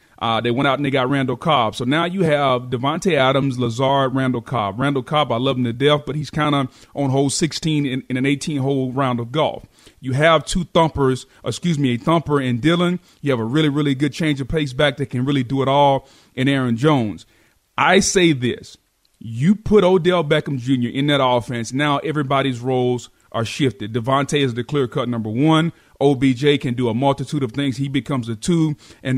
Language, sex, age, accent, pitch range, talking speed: English, male, 30-49, American, 130-155 Hz, 210 wpm